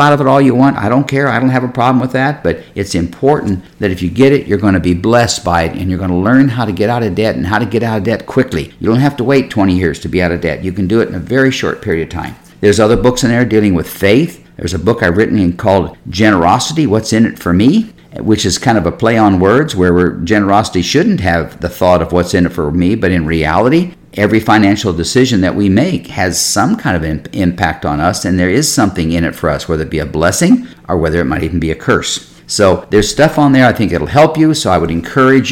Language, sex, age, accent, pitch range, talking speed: English, male, 50-69, American, 90-125 Hz, 275 wpm